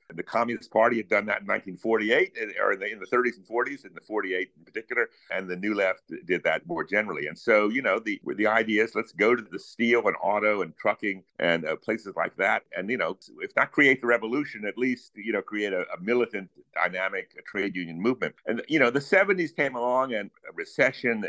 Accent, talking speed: American, 230 wpm